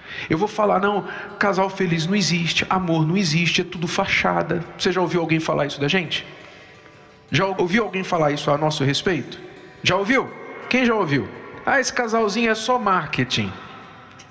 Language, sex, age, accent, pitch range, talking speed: Portuguese, male, 50-69, Brazilian, 170-230 Hz, 170 wpm